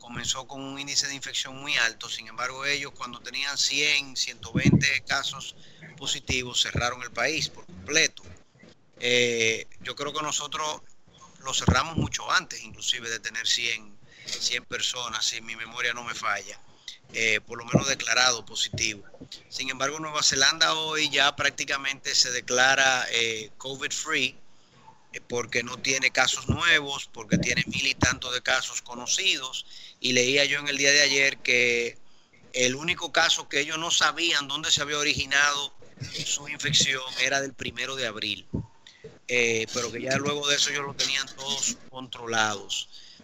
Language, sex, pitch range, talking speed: Spanish, male, 125-150 Hz, 155 wpm